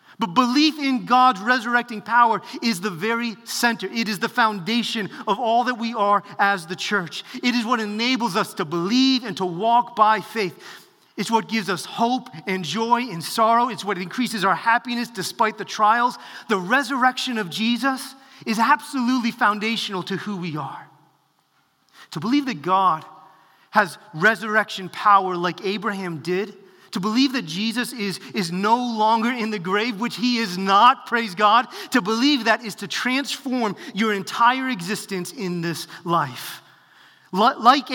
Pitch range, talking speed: 195-245 Hz, 160 wpm